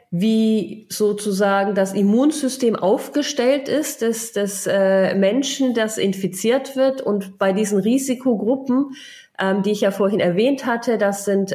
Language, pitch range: German, 195-235 Hz